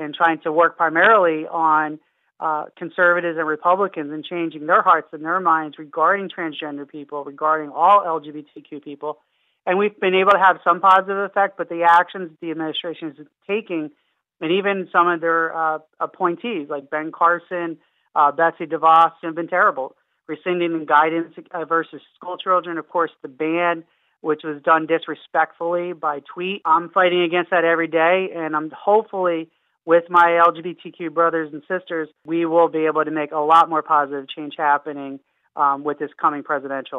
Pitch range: 155-180 Hz